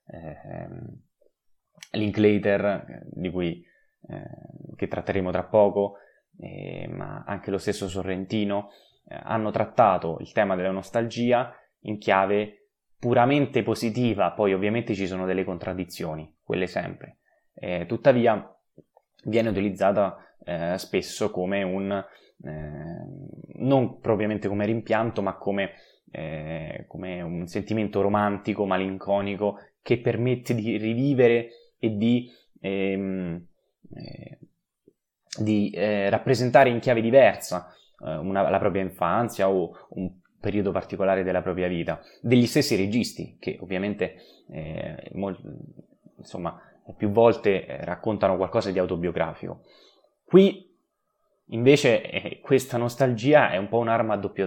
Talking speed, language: 115 wpm, Italian